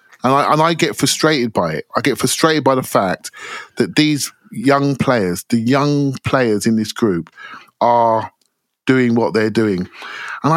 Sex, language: male, English